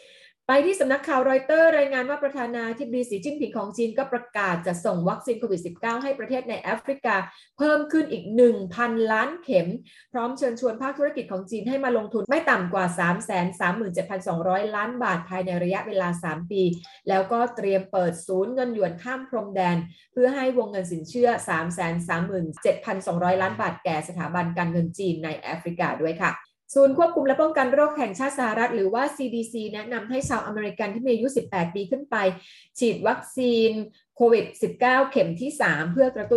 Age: 20-39